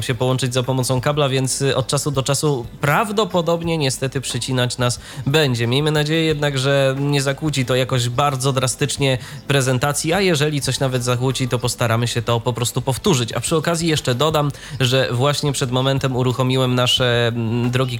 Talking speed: 165 wpm